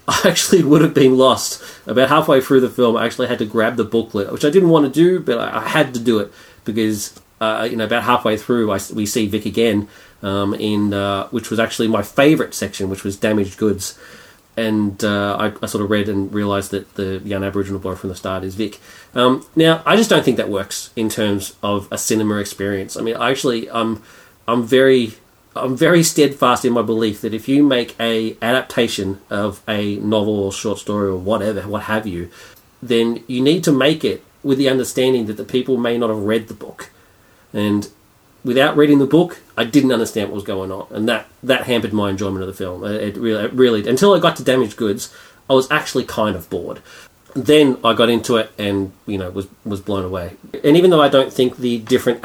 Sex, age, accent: male, 30-49, Australian